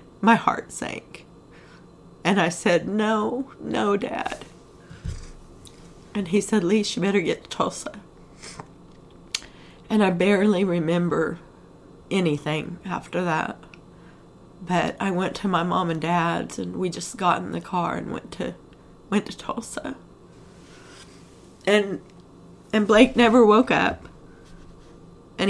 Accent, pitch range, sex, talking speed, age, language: American, 170-210 Hz, female, 125 wpm, 30-49, English